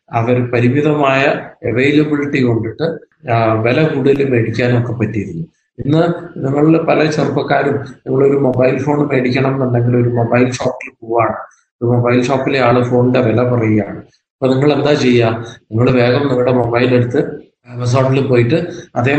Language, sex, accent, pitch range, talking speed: Malayalam, male, native, 115-140 Hz, 120 wpm